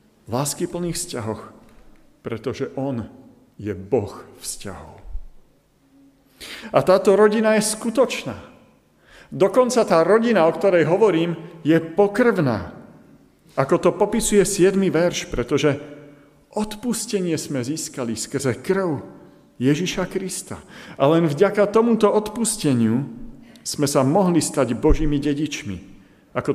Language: Slovak